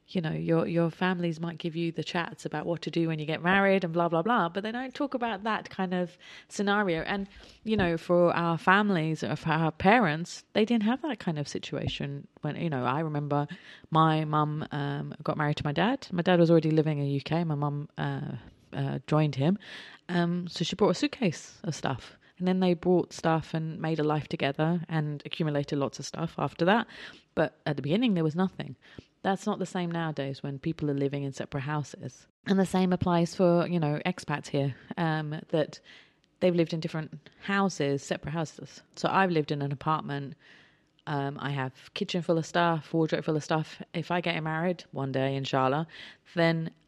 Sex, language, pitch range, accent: female, English, 150-180 Hz, British